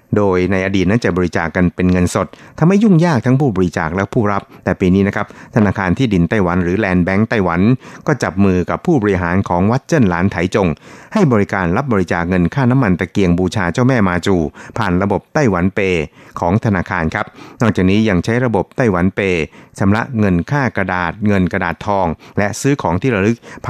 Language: Thai